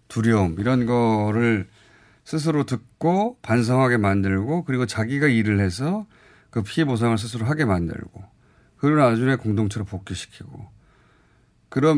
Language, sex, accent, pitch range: Korean, male, native, 105-145 Hz